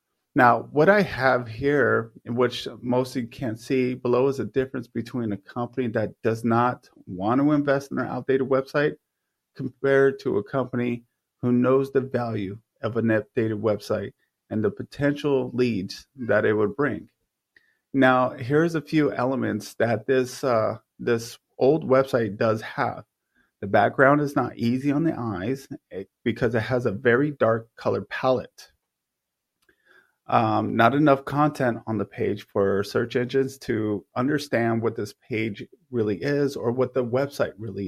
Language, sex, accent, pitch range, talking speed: English, male, American, 115-135 Hz, 155 wpm